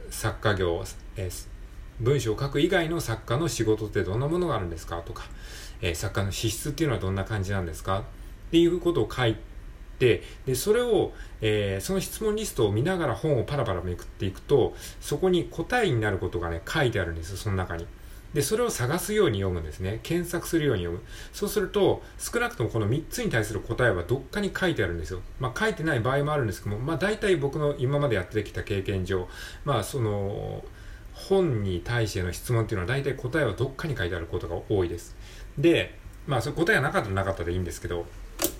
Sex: male